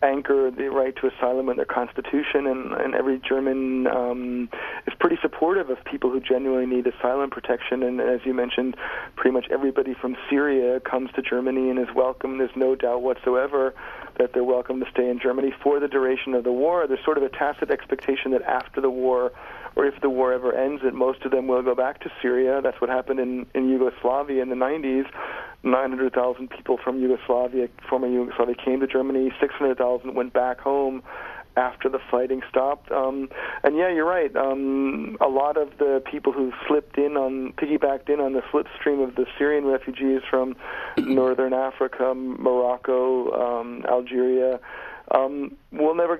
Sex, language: male, English